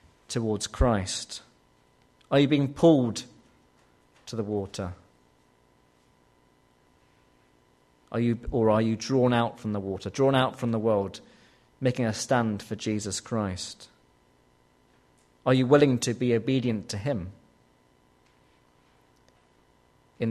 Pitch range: 85-125 Hz